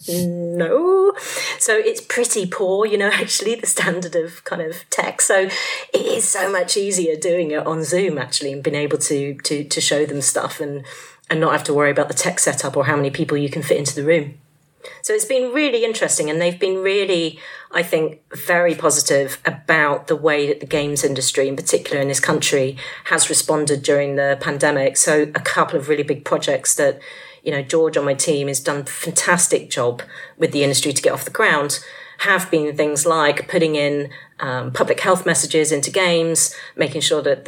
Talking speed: 200 wpm